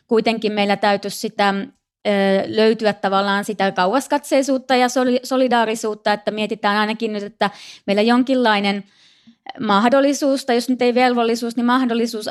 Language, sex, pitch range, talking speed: Finnish, female, 200-230 Hz, 120 wpm